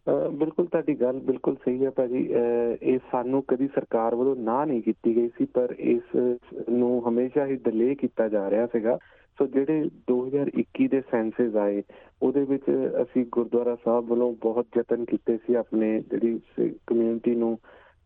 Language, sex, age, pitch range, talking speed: Punjabi, male, 40-59, 110-125 Hz, 155 wpm